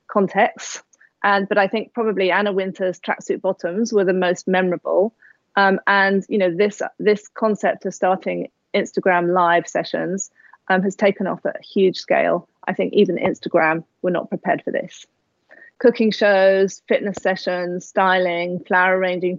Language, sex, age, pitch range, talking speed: Hungarian, female, 30-49, 180-210 Hz, 155 wpm